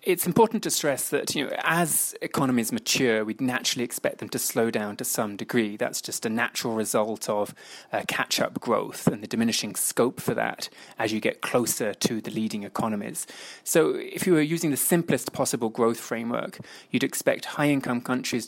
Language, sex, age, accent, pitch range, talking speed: English, male, 20-39, British, 110-145 Hz, 180 wpm